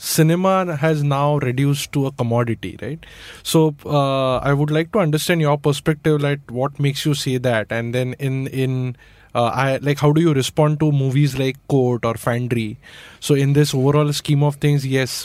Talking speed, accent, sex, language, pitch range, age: 190 wpm, Indian, male, English, 115-140 Hz, 20-39